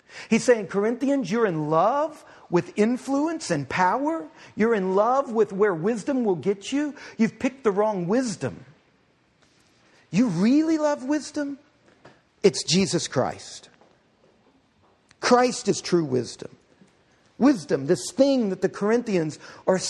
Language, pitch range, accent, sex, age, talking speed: English, 185-260 Hz, American, male, 50-69, 125 wpm